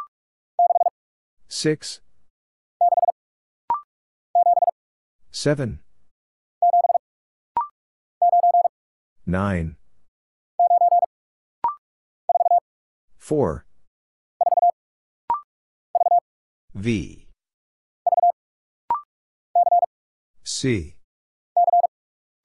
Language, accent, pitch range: English, American, 235-350 Hz